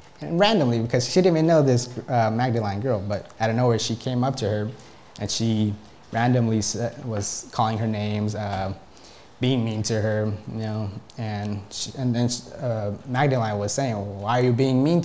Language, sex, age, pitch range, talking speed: English, male, 20-39, 105-125 Hz, 190 wpm